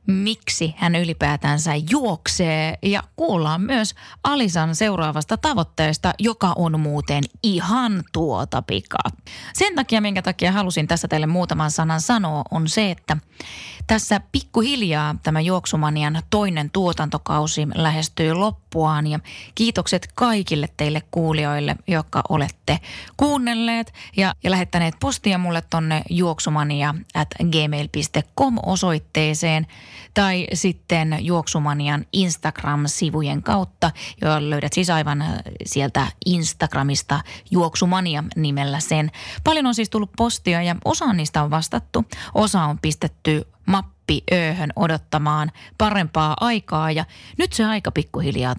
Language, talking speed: Finnish, 110 wpm